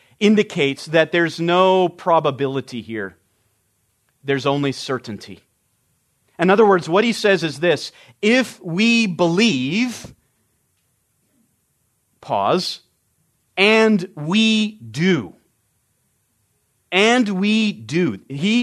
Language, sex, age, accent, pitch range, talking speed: English, male, 40-59, American, 130-200 Hz, 90 wpm